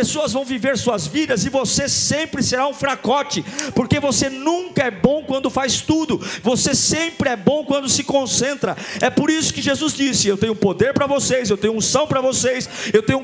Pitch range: 205-275 Hz